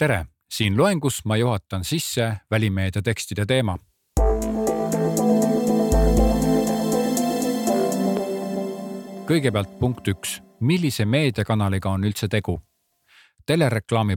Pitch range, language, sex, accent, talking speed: 100-140 Hz, Czech, male, Finnish, 75 wpm